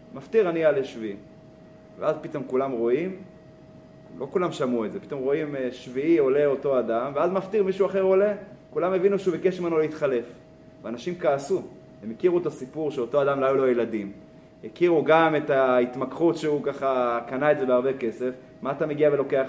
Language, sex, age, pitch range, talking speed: Hebrew, male, 30-49, 130-175 Hz, 175 wpm